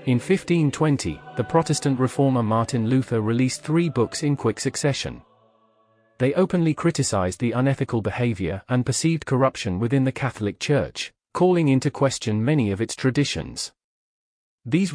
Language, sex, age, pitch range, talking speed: English, male, 30-49, 115-145 Hz, 135 wpm